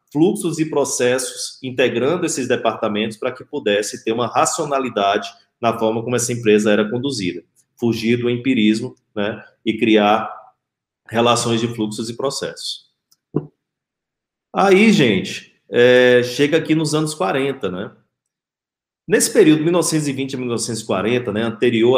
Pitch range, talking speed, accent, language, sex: 110-140 Hz, 120 wpm, Brazilian, Portuguese, male